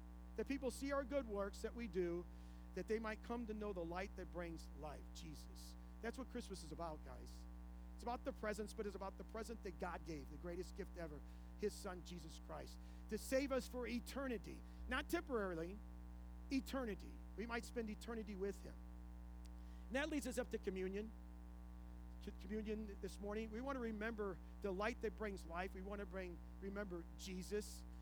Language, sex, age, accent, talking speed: English, male, 50-69, American, 185 wpm